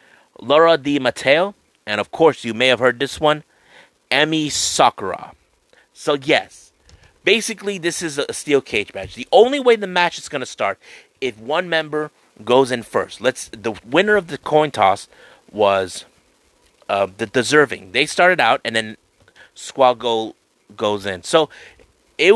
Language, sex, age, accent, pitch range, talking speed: English, male, 30-49, American, 110-165 Hz, 165 wpm